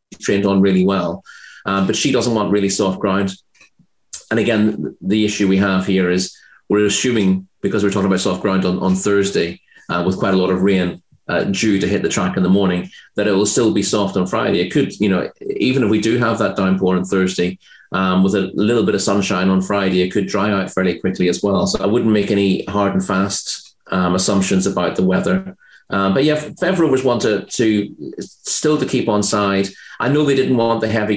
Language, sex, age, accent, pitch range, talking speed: English, male, 30-49, British, 95-105 Hz, 225 wpm